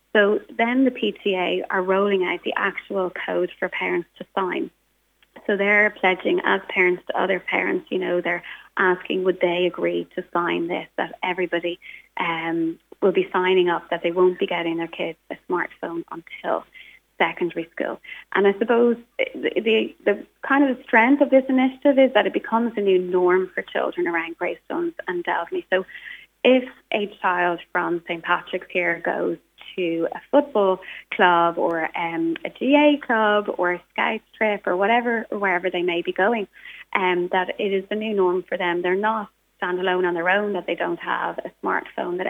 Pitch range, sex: 180-215 Hz, female